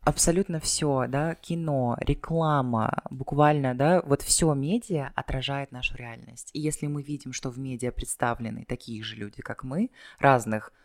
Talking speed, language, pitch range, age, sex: 150 wpm, Russian, 120-150 Hz, 20-39, female